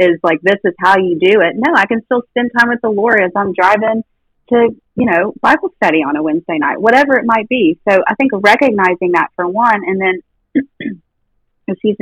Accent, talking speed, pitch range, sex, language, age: American, 215 wpm, 175-215 Hz, female, English, 30-49